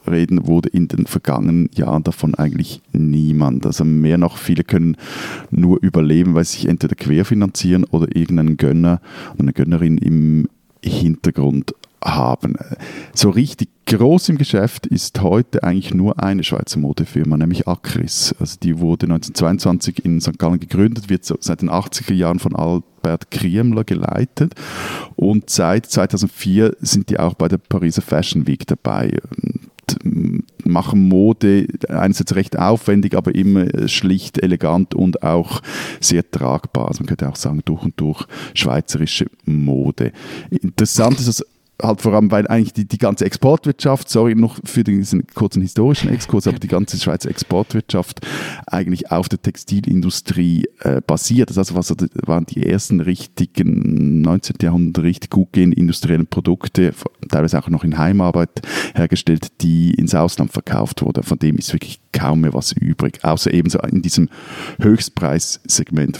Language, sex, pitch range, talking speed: German, male, 85-105 Hz, 145 wpm